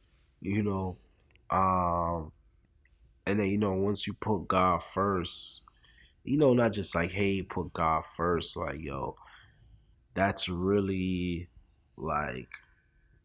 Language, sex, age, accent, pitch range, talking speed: English, male, 20-39, American, 80-100 Hz, 120 wpm